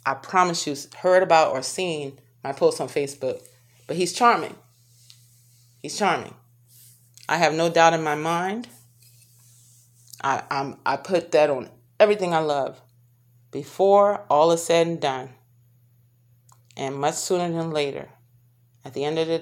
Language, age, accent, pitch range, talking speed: English, 30-49, American, 125-180 Hz, 150 wpm